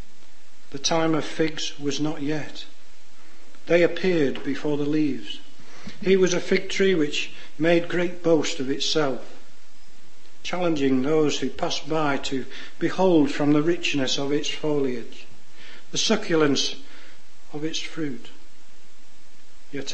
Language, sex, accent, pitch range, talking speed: English, male, British, 140-165 Hz, 125 wpm